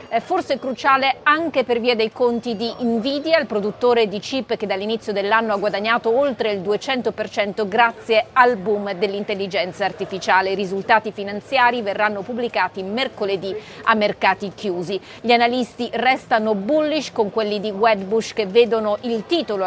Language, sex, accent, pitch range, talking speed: Italian, female, native, 205-245 Hz, 145 wpm